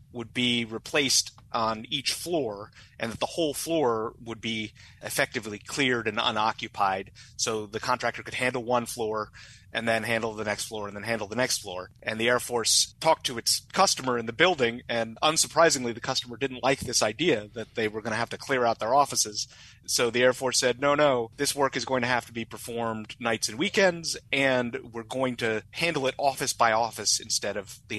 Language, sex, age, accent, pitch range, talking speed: English, male, 30-49, American, 110-125 Hz, 210 wpm